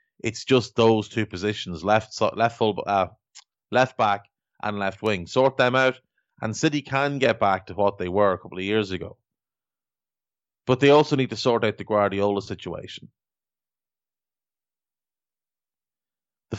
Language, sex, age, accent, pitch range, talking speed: English, male, 30-49, Irish, 105-125 Hz, 150 wpm